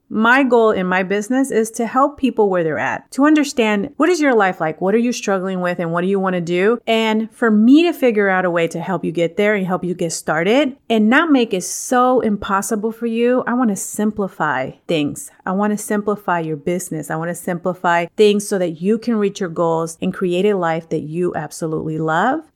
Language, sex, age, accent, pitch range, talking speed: English, female, 30-49, American, 170-220 Hz, 235 wpm